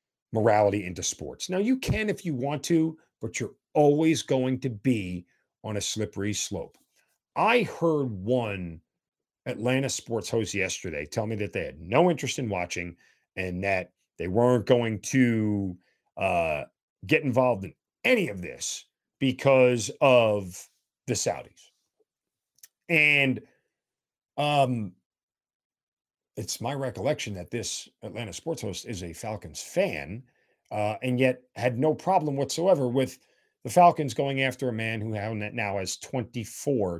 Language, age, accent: English, 40-59, American